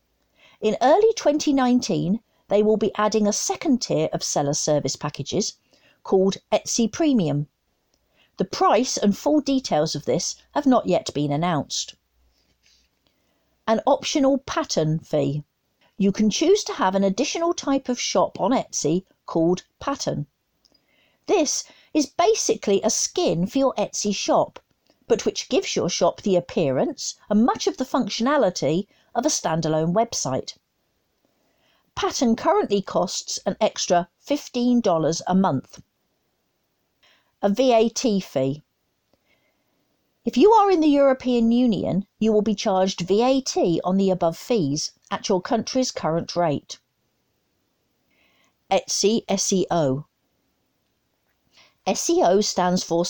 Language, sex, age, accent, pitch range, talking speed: English, female, 50-69, British, 170-260 Hz, 125 wpm